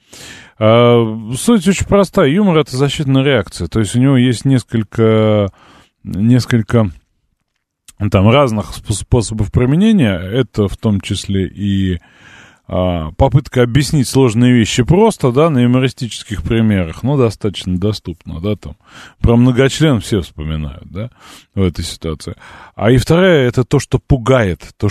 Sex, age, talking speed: male, 20-39, 130 wpm